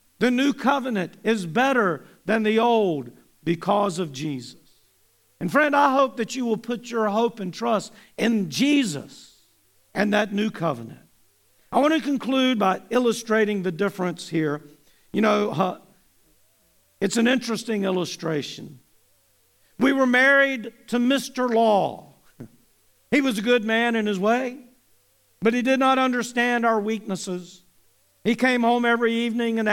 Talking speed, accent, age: 145 wpm, American, 50-69